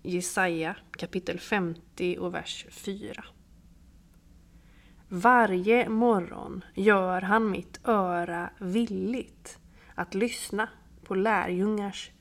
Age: 30-49